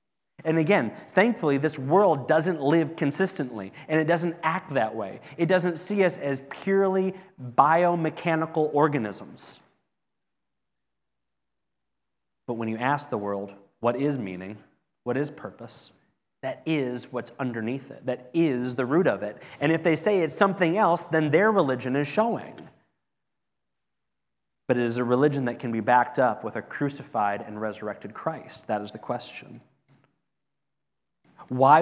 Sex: male